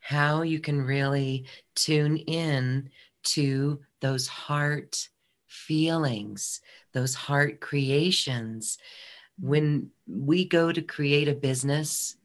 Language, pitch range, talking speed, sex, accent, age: English, 130-155 Hz, 100 wpm, female, American, 40-59